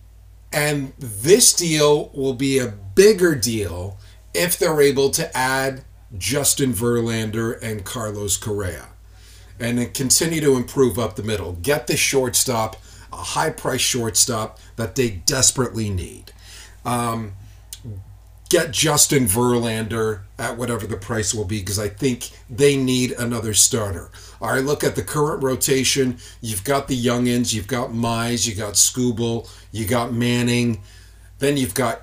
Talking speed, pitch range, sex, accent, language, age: 140 wpm, 100-130 Hz, male, American, English, 40-59